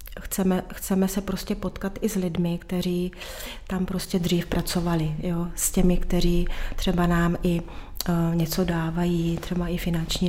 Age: 30-49